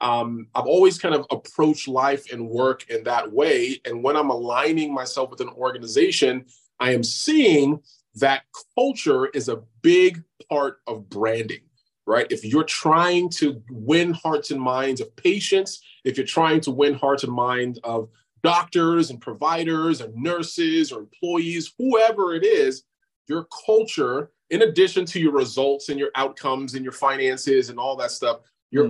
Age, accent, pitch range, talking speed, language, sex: 30-49, American, 120-160 Hz, 165 wpm, English, male